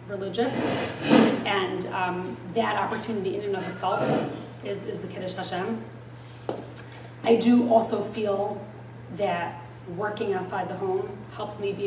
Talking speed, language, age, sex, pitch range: 130 wpm, English, 20-39, female, 170-215 Hz